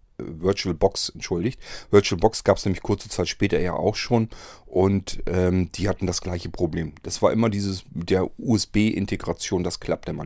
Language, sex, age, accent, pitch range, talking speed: German, male, 40-59, German, 95-115 Hz, 170 wpm